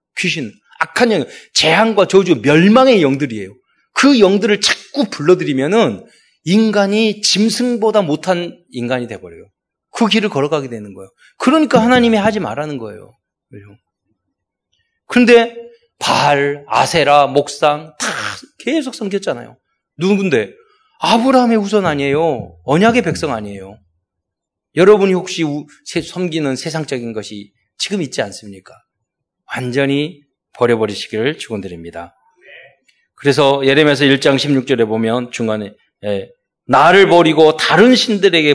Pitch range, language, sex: 125-210 Hz, Korean, male